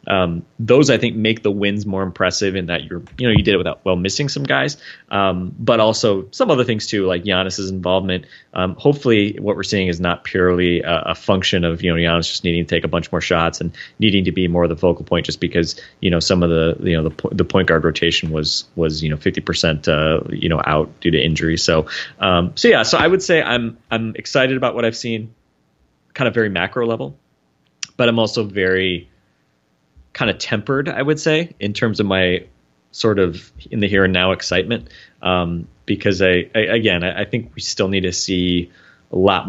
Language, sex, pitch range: English, male, 85-105 Hz